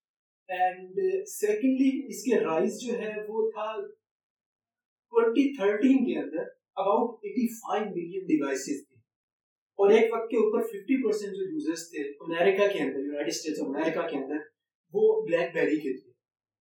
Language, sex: Urdu, male